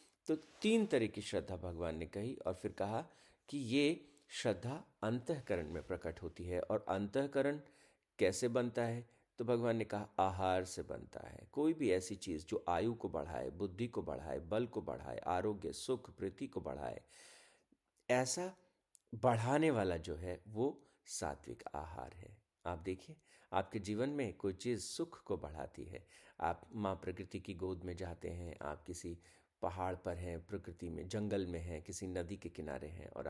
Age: 50-69